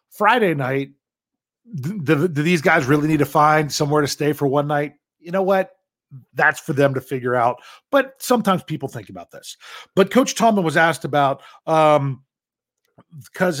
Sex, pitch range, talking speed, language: male, 140-175 Hz, 170 wpm, English